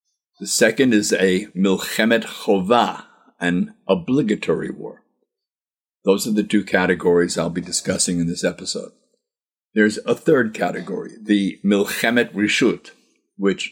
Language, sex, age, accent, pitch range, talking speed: English, male, 60-79, American, 95-115 Hz, 125 wpm